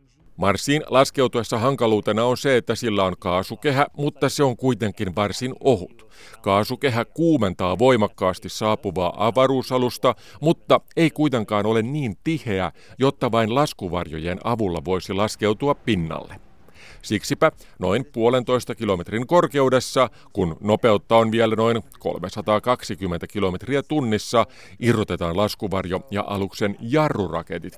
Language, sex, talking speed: Finnish, male, 110 wpm